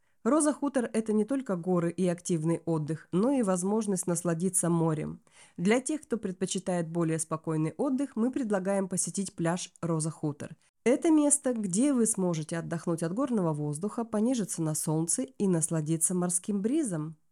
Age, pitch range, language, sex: 20-39, 165-225 Hz, Russian, female